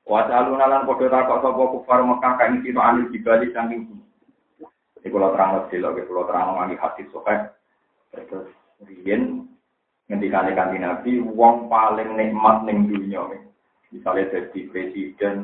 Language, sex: Indonesian, male